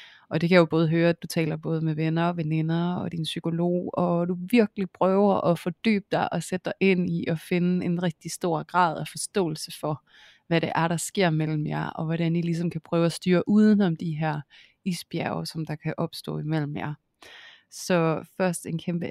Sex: female